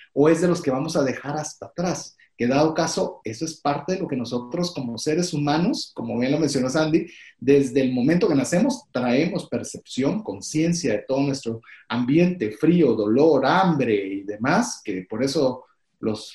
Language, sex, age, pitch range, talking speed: Spanish, male, 30-49, 125-170 Hz, 180 wpm